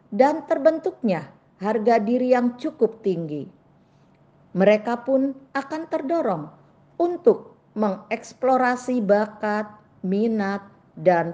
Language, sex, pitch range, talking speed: Indonesian, female, 185-260 Hz, 85 wpm